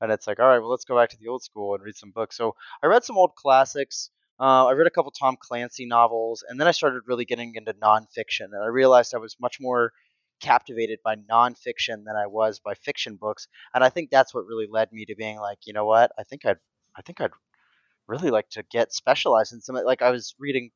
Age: 20-39